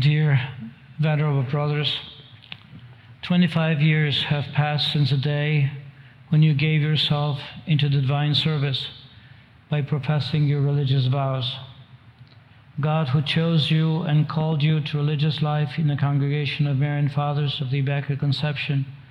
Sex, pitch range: male, 135-155 Hz